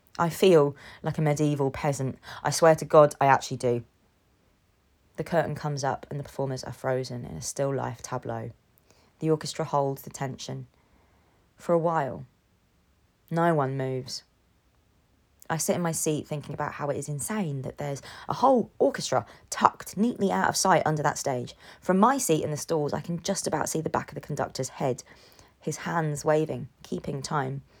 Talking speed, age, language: 180 wpm, 20-39, English